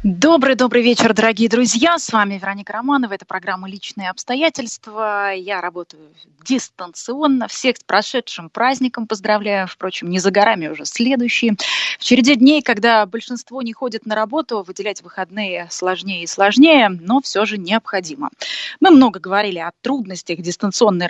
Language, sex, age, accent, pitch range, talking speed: Russian, female, 20-39, native, 195-255 Hz, 145 wpm